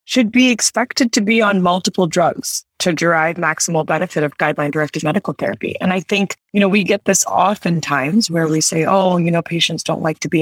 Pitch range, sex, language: 155-185 Hz, female, English